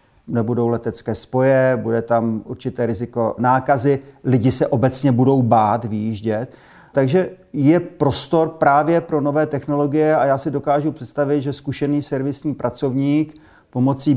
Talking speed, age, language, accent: 130 wpm, 40-59, Czech, native